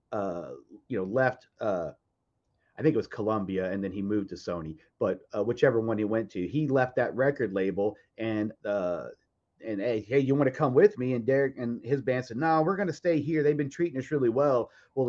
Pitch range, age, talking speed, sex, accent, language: 105-135 Hz, 30-49, 235 wpm, male, American, English